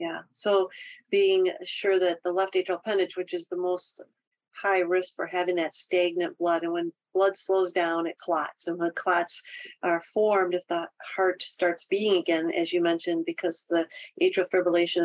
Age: 50-69